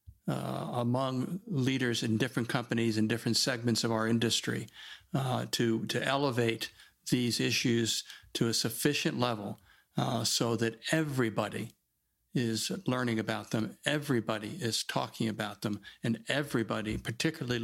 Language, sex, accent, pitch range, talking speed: English, male, American, 115-130 Hz, 130 wpm